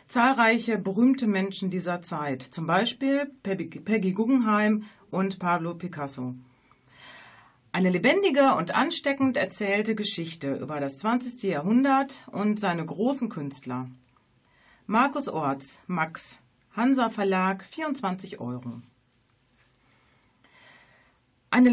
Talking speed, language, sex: 95 wpm, German, female